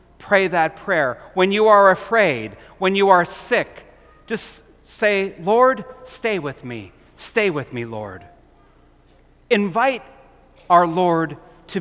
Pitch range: 155-225 Hz